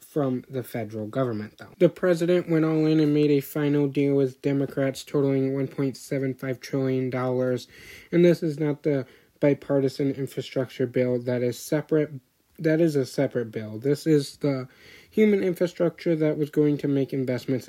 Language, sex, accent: English, male, American